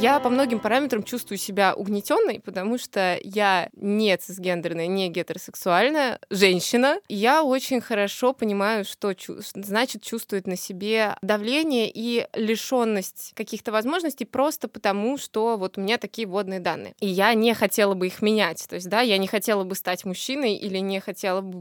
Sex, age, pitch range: female, 20-39, 185-225 Hz